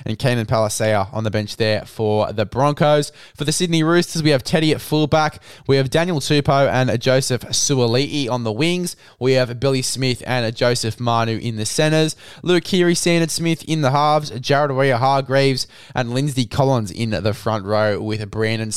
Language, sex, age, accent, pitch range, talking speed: English, male, 20-39, Australian, 115-145 Hz, 180 wpm